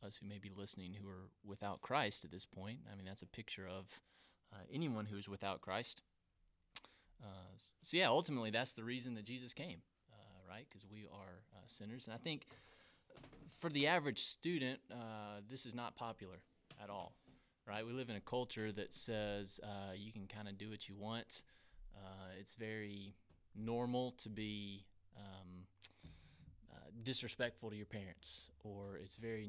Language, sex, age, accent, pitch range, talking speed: English, male, 20-39, American, 95-115 Hz, 175 wpm